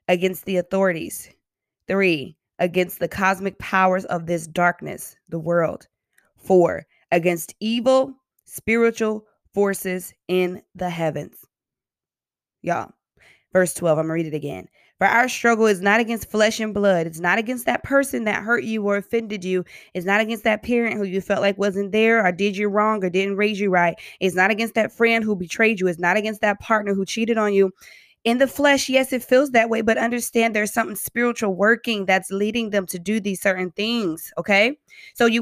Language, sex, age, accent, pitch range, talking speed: English, female, 20-39, American, 185-230 Hz, 190 wpm